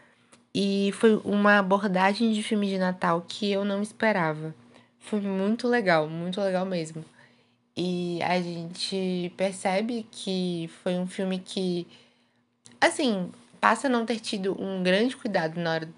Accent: Brazilian